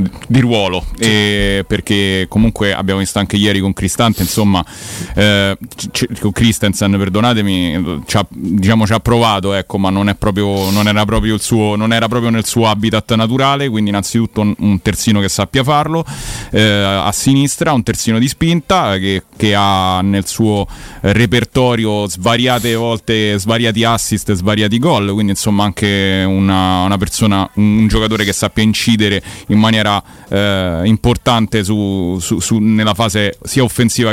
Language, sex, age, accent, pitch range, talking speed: Italian, male, 30-49, native, 100-115 Hz, 155 wpm